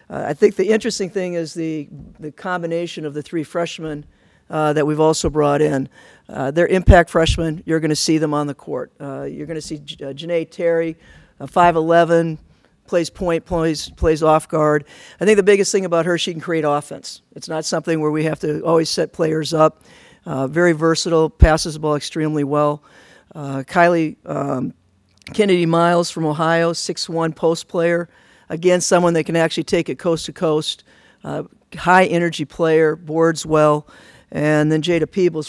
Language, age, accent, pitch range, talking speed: English, 50-69, American, 150-170 Hz, 180 wpm